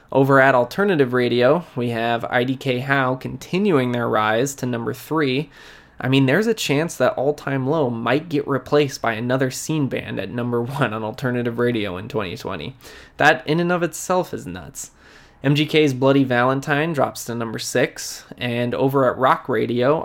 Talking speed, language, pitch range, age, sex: 170 wpm, English, 120-140 Hz, 20-39, male